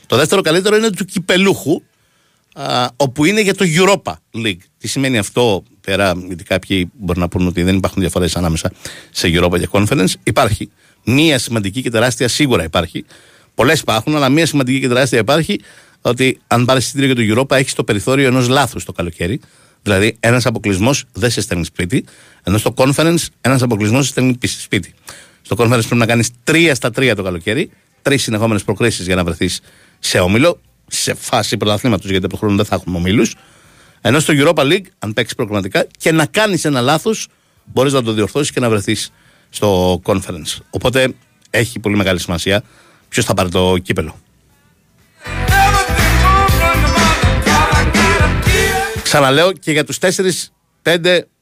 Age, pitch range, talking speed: 60-79, 95-135 Hz, 165 wpm